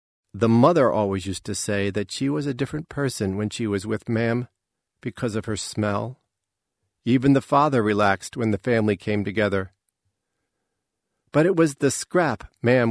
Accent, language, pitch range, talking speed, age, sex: American, English, 100-130 Hz, 165 wpm, 40-59, male